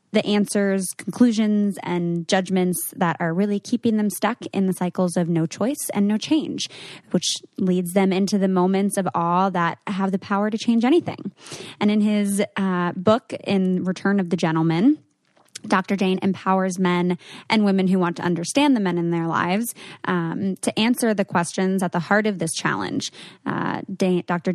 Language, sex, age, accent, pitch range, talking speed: English, female, 20-39, American, 175-200 Hz, 180 wpm